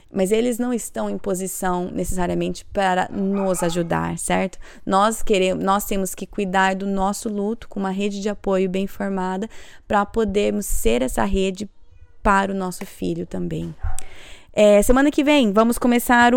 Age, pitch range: 20-39, 185-230 Hz